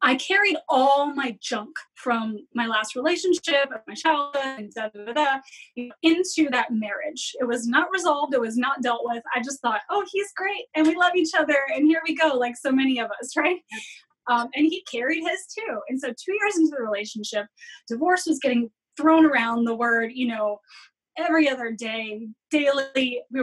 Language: English